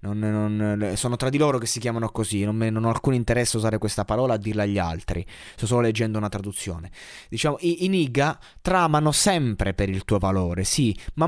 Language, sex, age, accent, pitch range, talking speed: Italian, male, 20-39, native, 105-140 Hz, 220 wpm